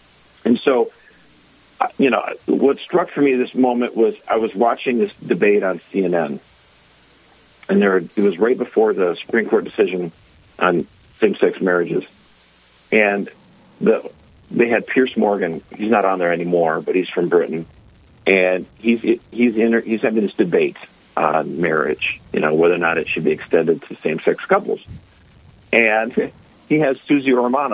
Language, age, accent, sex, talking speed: English, 50-69, American, male, 160 wpm